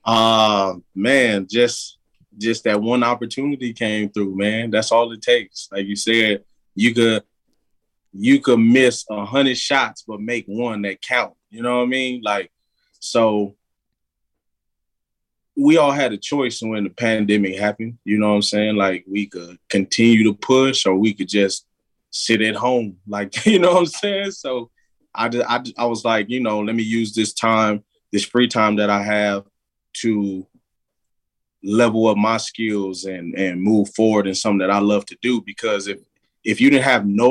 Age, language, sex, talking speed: 20-39, English, male, 185 wpm